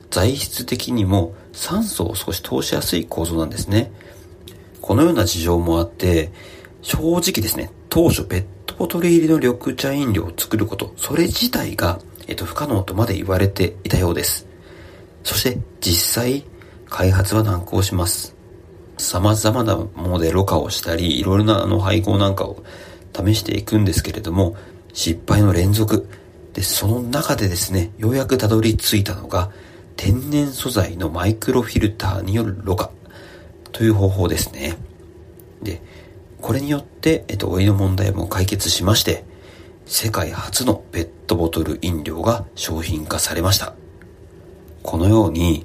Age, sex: 40-59, male